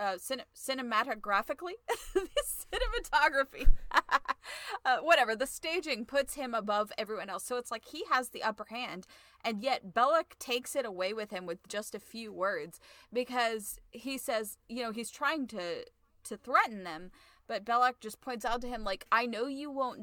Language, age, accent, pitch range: English, 20-39, American, 200-260 Hz